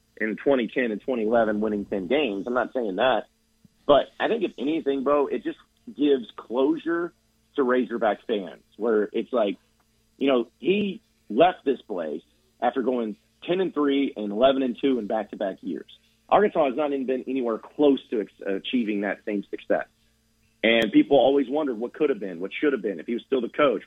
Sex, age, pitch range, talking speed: male, 40-59, 110-140 Hz, 195 wpm